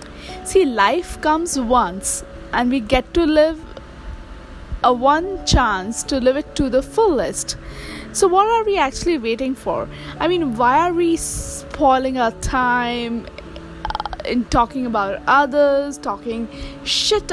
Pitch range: 245-320 Hz